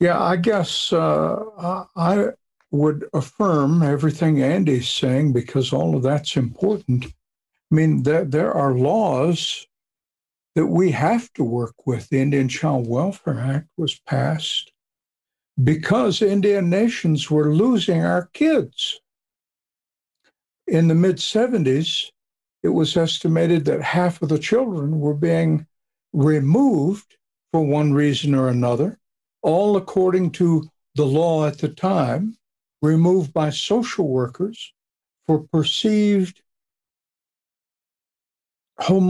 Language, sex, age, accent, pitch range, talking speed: English, male, 60-79, American, 140-180 Hz, 115 wpm